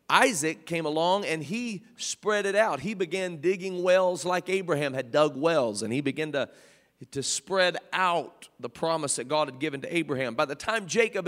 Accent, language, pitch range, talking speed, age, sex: American, English, 155-205 Hz, 190 wpm, 40-59, male